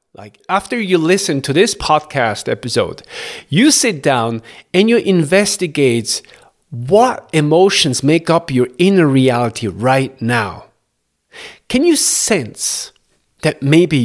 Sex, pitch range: male, 130-200 Hz